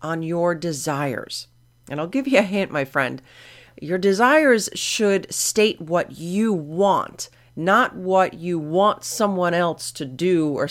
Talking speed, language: 150 wpm, English